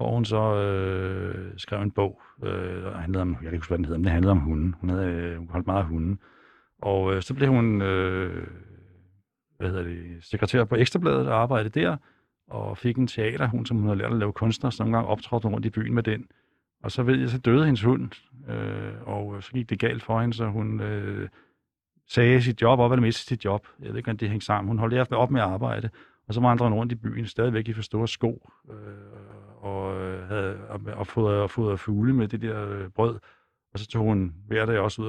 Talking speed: 230 wpm